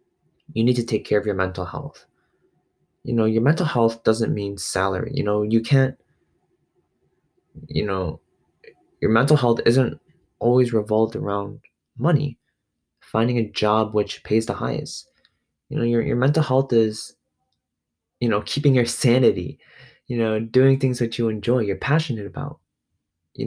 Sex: male